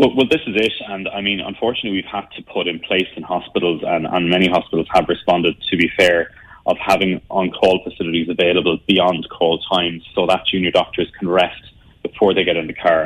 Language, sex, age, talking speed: English, male, 30-49, 210 wpm